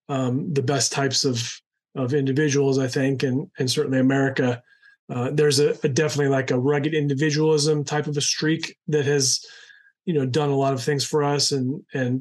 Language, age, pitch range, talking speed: English, 30-49, 135-150 Hz, 190 wpm